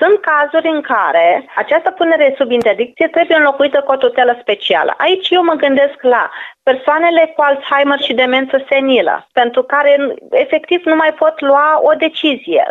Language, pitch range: Romanian, 270-335 Hz